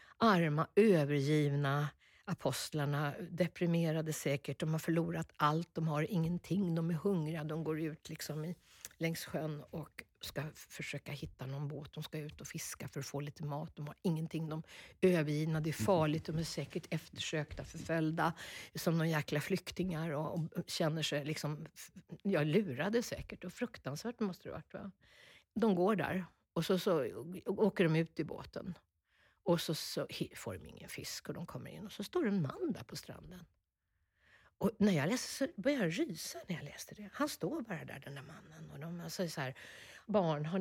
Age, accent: 50-69, native